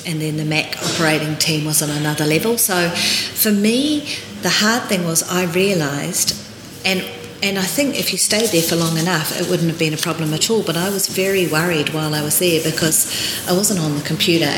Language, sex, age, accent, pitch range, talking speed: English, female, 40-59, Australian, 150-175 Hz, 220 wpm